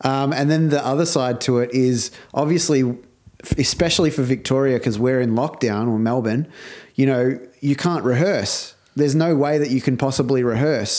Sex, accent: male, Australian